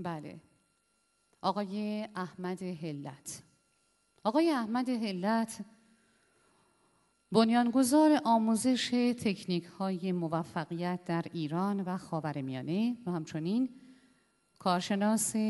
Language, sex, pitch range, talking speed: Persian, female, 175-230 Hz, 75 wpm